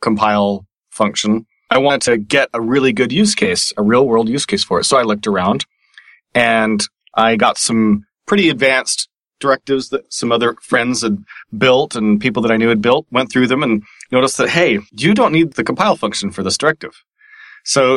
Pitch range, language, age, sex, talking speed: 110-130 Hz, English, 30-49, male, 195 wpm